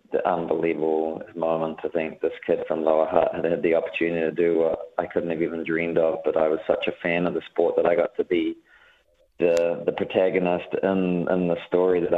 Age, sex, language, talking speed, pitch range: 20-39, male, English, 220 wpm, 80-100 Hz